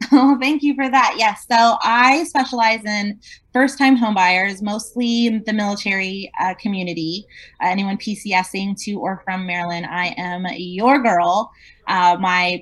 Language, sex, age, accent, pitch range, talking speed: English, female, 20-39, American, 170-210 Hz, 145 wpm